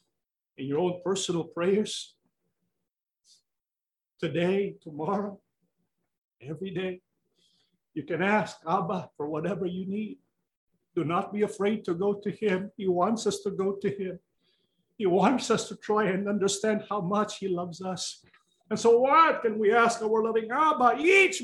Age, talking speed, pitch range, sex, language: 50-69, 150 wpm, 180-210 Hz, male, English